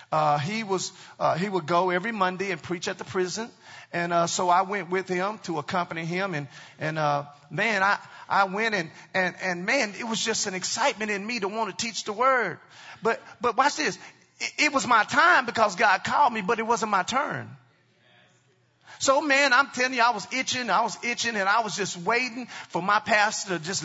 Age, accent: 40-59, American